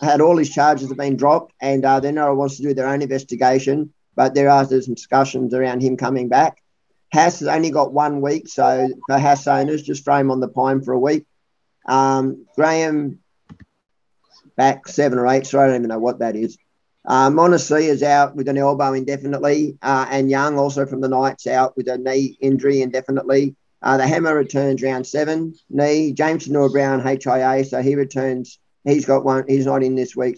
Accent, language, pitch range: Australian, English, 130-145 Hz